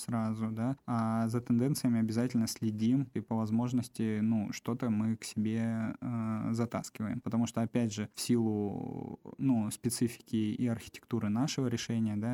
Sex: male